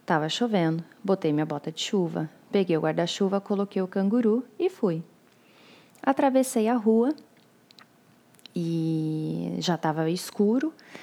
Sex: female